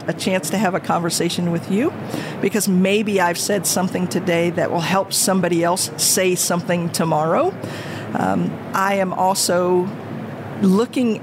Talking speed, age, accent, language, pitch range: 145 wpm, 50-69, American, English, 175-225 Hz